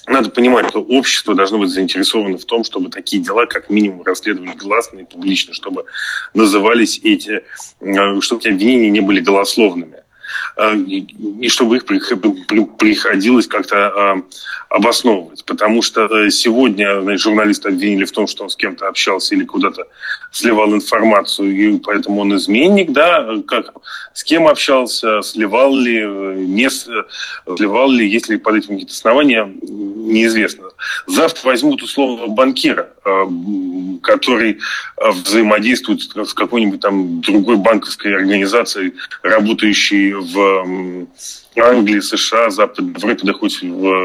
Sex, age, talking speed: male, 30-49, 120 wpm